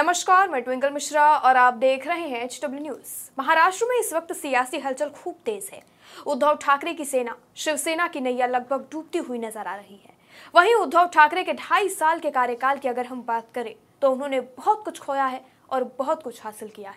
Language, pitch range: Hindi, 250-325 Hz